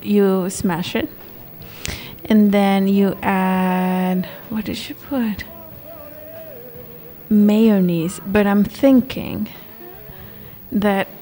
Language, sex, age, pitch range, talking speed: English, female, 30-49, 185-220 Hz, 85 wpm